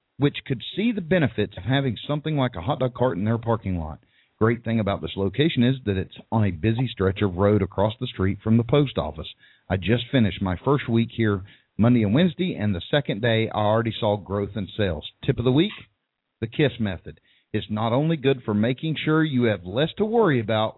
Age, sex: 40-59, male